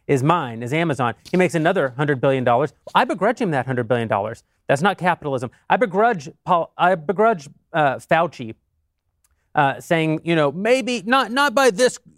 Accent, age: American, 30-49